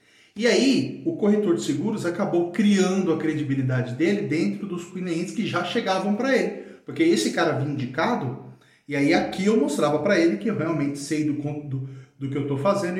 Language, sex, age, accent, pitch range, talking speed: Portuguese, male, 40-59, Brazilian, 140-195 Hz, 200 wpm